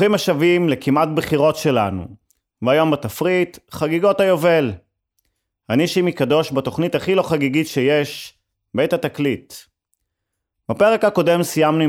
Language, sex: Hebrew, male